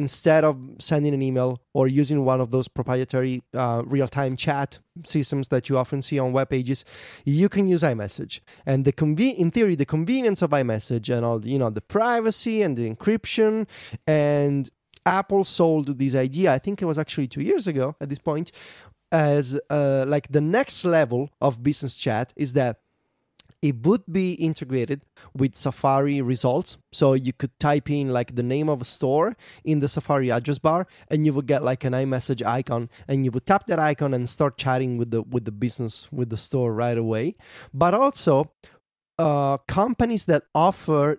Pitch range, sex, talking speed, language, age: 130-165 Hz, male, 185 wpm, English, 20-39